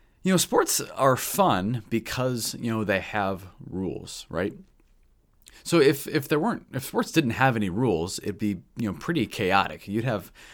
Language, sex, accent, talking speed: English, male, American, 175 wpm